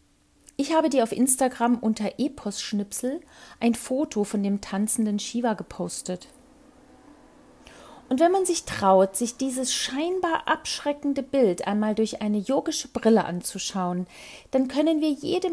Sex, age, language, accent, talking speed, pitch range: female, 40-59, German, German, 130 wpm, 190-250 Hz